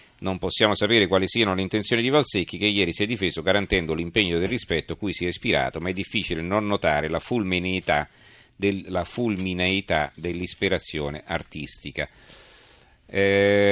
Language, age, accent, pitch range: Italian, 40-59, native, 85-105 Hz